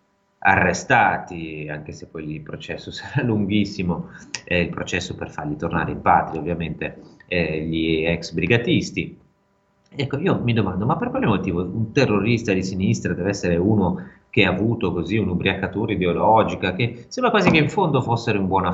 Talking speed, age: 165 wpm, 30-49